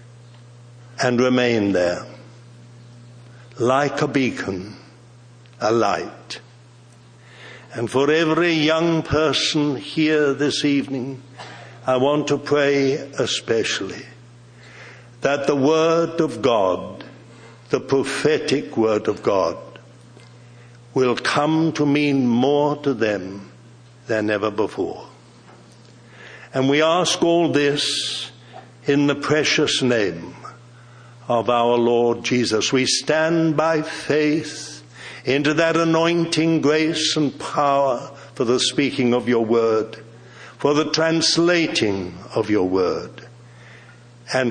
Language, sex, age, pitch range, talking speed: English, male, 60-79, 110-145 Hz, 105 wpm